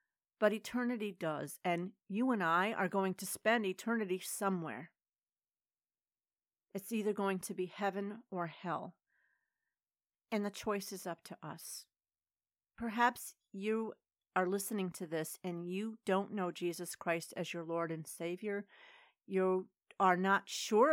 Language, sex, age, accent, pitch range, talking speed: English, female, 40-59, American, 165-205 Hz, 140 wpm